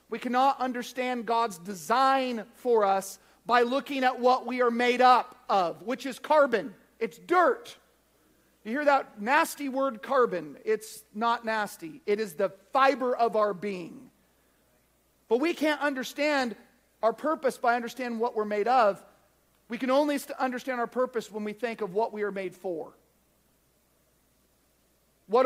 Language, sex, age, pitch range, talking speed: English, male, 40-59, 230-300 Hz, 155 wpm